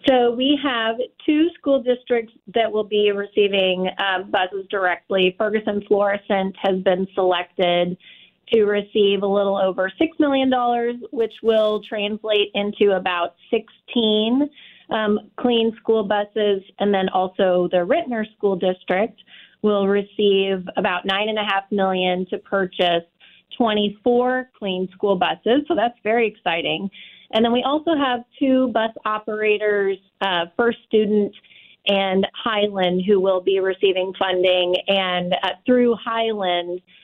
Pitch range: 185-225 Hz